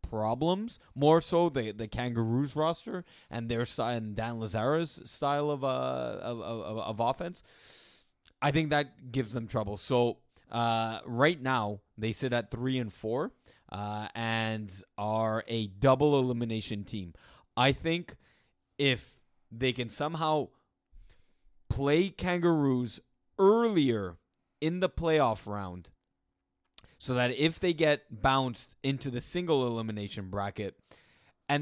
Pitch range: 110-150 Hz